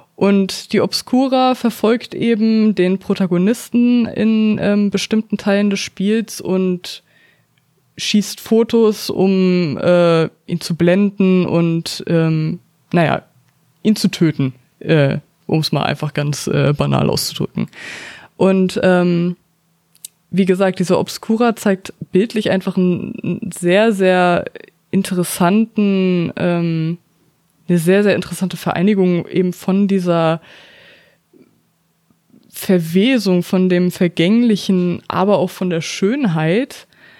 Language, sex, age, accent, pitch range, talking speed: German, female, 20-39, German, 175-205 Hz, 105 wpm